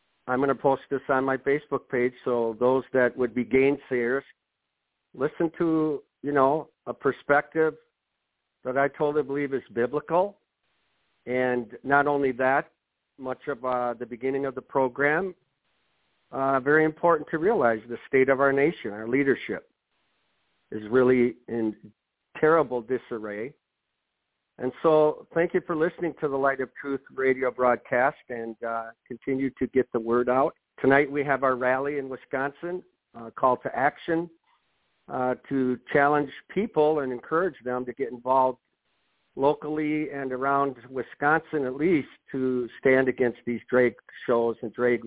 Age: 50-69